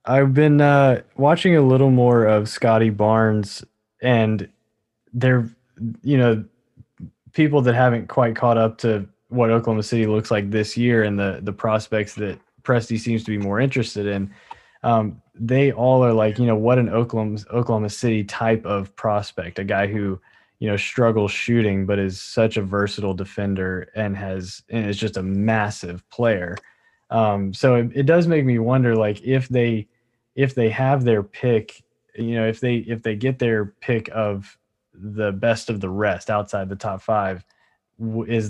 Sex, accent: male, American